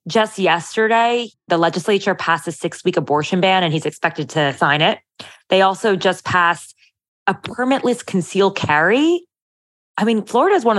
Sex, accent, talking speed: female, American, 155 wpm